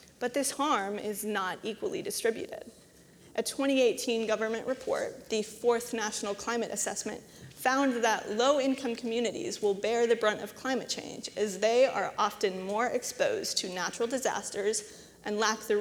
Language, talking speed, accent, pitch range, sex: English, 150 wpm, American, 210-255 Hz, female